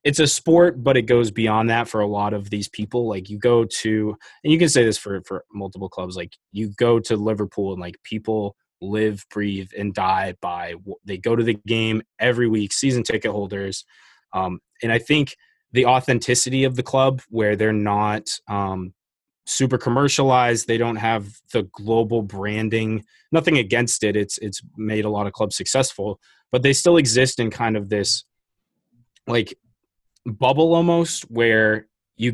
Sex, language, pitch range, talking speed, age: male, English, 105-120 Hz, 175 wpm, 20-39